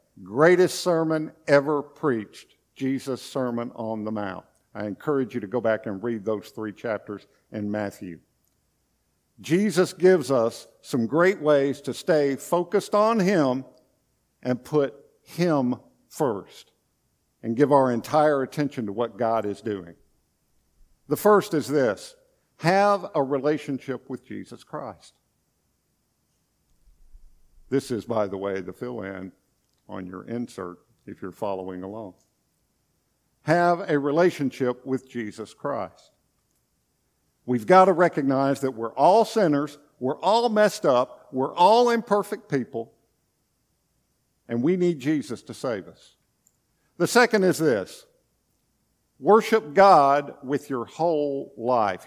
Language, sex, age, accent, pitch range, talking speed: English, male, 50-69, American, 115-170 Hz, 125 wpm